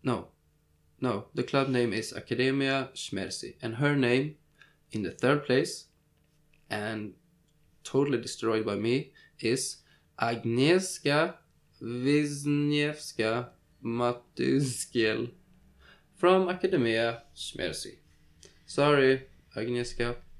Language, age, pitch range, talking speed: English, 20-39, 120-150 Hz, 85 wpm